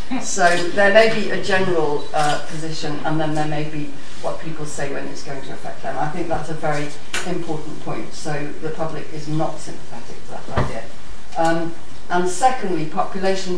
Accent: British